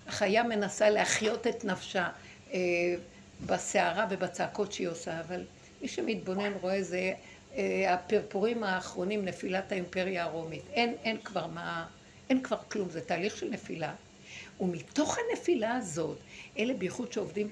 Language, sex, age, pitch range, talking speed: Hebrew, female, 60-79, 185-230 Hz, 125 wpm